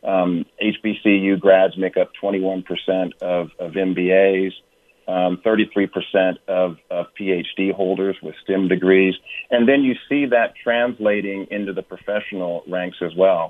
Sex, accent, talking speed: male, American, 135 wpm